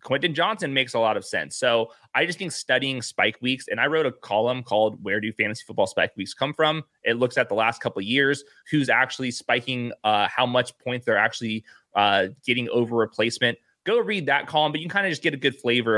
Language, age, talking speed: English, 20-39, 235 wpm